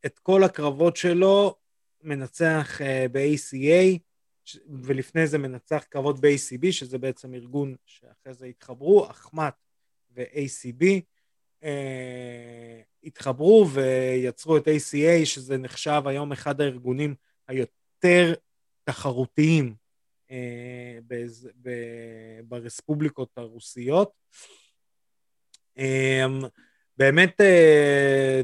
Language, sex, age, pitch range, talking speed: Hebrew, male, 30-49, 125-160 Hz, 85 wpm